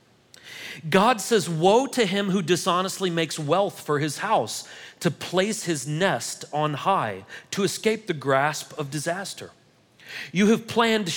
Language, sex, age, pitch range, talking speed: English, male, 40-59, 145-200 Hz, 145 wpm